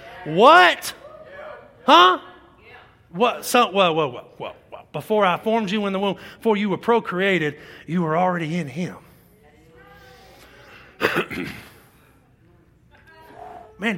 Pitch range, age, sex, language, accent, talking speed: 235-310 Hz, 30-49, male, English, American, 105 wpm